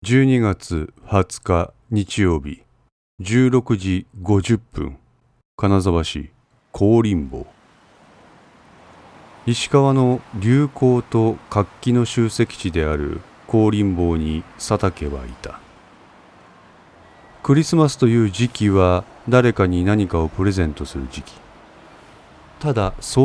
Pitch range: 85-120 Hz